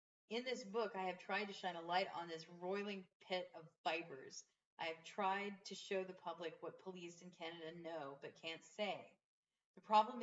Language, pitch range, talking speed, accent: English, 165-205 Hz, 195 wpm, American